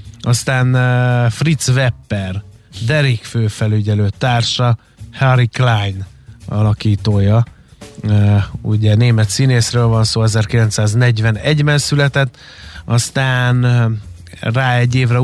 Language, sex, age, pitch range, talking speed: Hungarian, male, 30-49, 110-130 Hz, 90 wpm